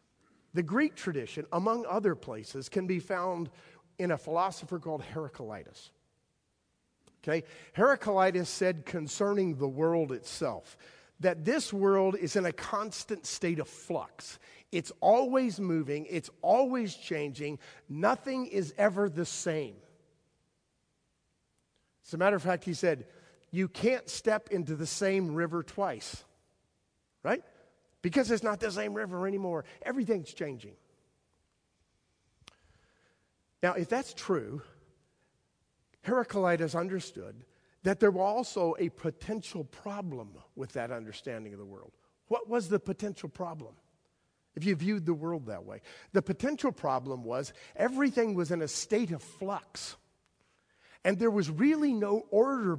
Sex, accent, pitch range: male, American, 155-205 Hz